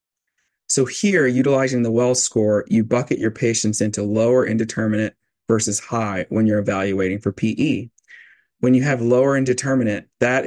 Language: English